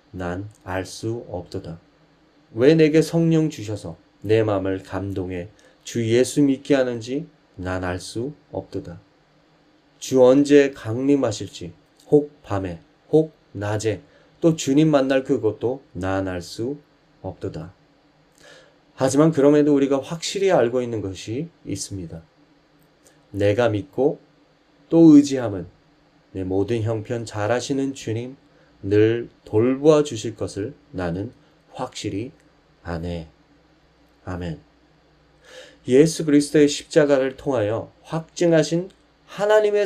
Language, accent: Korean, native